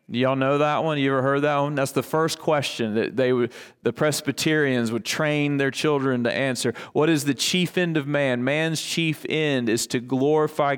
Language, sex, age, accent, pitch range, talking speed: English, male, 30-49, American, 125-165 Hz, 200 wpm